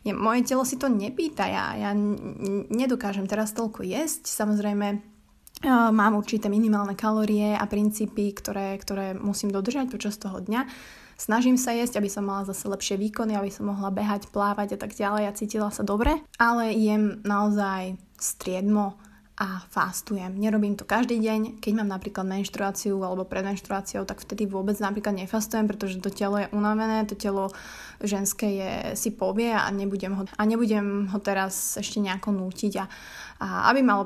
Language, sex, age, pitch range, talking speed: Slovak, female, 20-39, 200-225 Hz, 170 wpm